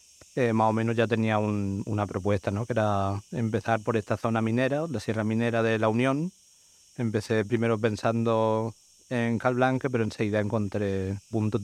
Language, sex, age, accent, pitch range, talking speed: English, male, 30-49, Spanish, 110-120 Hz, 170 wpm